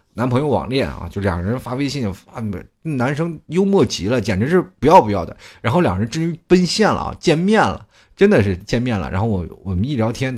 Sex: male